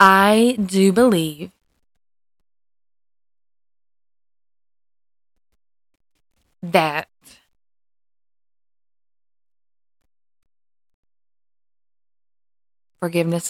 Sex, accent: female, American